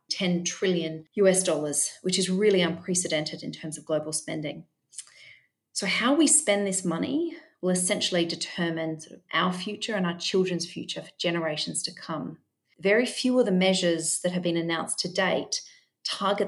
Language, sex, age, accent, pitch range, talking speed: English, female, 40-59, Australian, 165-190 Hz, 160 wpm